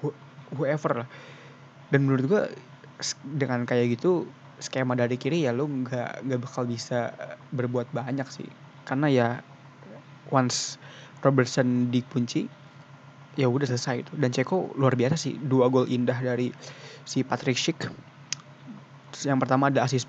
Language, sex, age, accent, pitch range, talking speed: Indonesian, male, 20-39, native, 130-145 Hz, 135 wpm